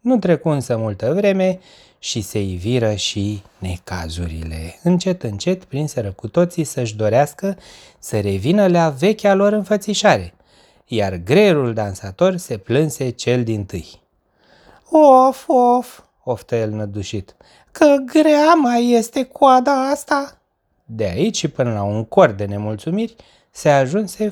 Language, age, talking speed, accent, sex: Romanian, 30-49, 125 wpm, native, male